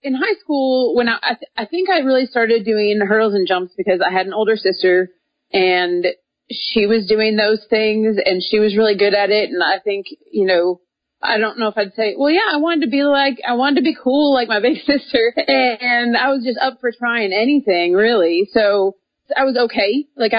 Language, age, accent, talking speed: English, 30-49, American, 220 wpm